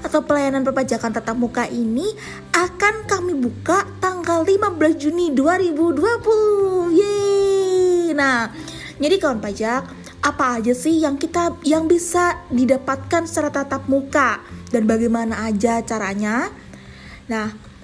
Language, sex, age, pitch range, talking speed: Indonesian, female, 20-39, 225-325 Hz, 115 wpm